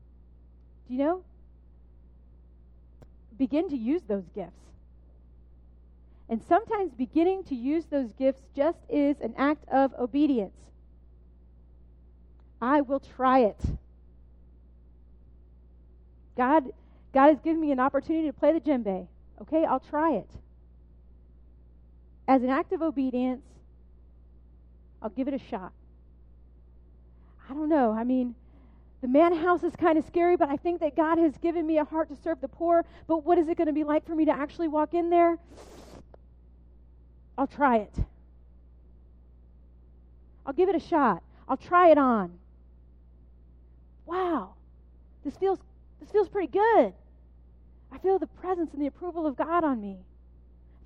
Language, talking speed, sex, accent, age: English, 145 wpm, female, American, 40-59